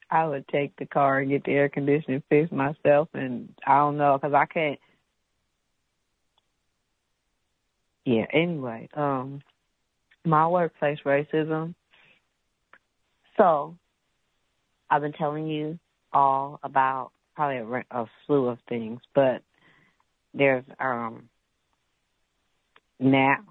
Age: 40-59